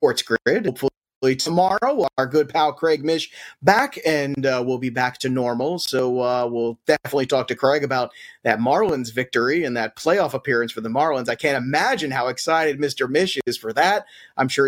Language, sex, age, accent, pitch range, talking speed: English, male, 30-49, American, 135-180 Hz, 190 wpm